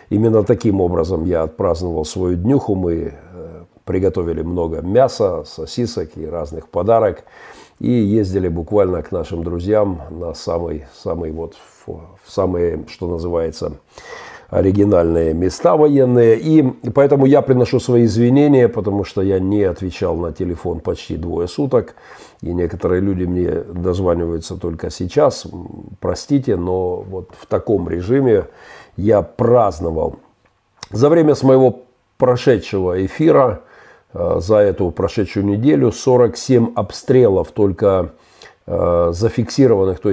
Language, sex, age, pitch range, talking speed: Russian, male, 50-69, 90-120 Hz, 110 wpm